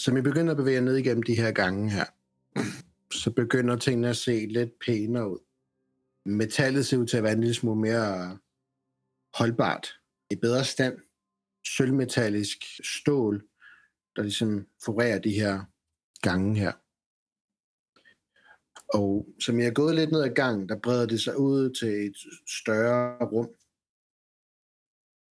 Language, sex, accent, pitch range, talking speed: Danish, male, native, 105-125 Hz, 140 wpm